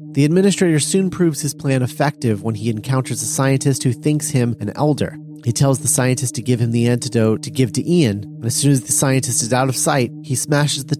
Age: 30-49